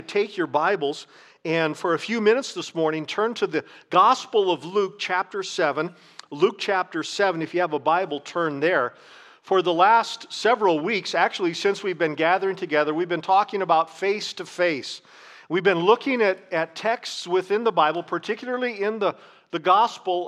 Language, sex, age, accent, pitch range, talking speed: English, male, 50-69, American, 180-235 Hz, 170 wpm